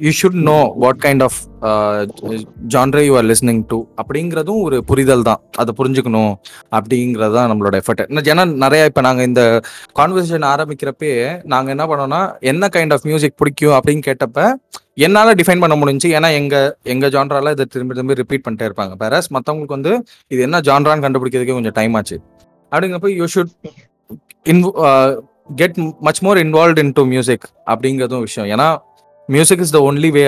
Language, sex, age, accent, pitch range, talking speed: Tamil, male, 20-39, native, 110-150 Hz, 150 wpm